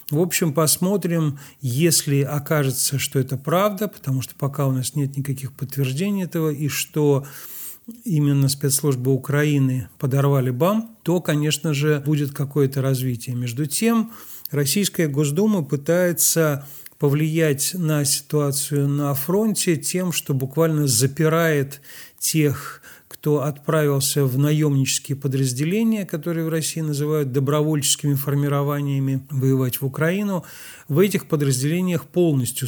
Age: 40-59